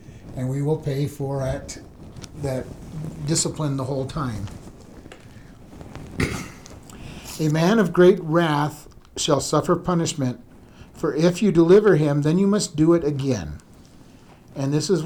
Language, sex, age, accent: English, male, 50-69, American